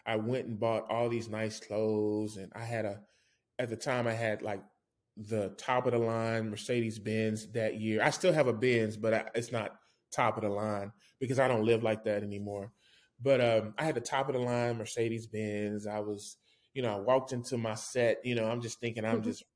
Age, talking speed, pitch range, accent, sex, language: 20-39, 225 wpm, 110-125 Hz, American, male, English